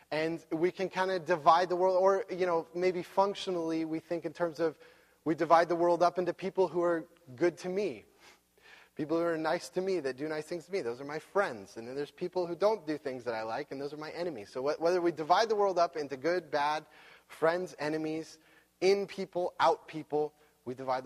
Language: English